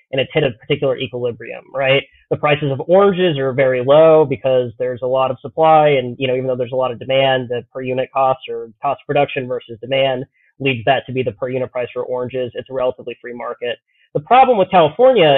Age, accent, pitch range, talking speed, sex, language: 30-49, American, 125-150 Hz, 225 wpm, male, English